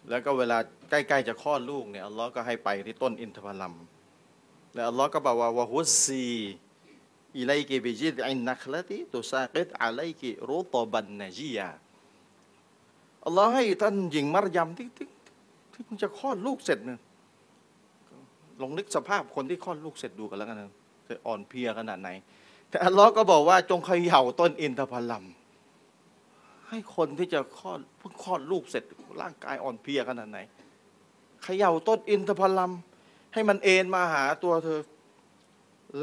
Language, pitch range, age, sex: Thai, 130-205 Hz, 30-49, male